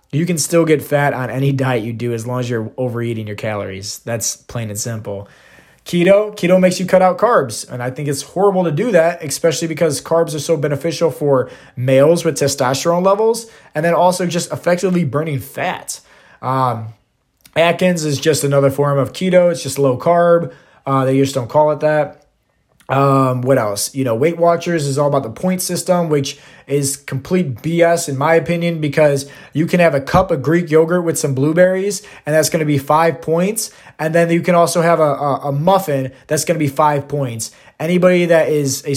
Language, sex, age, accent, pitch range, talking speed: English, male, 20-39, American, 135-170 Hz, 200 wpm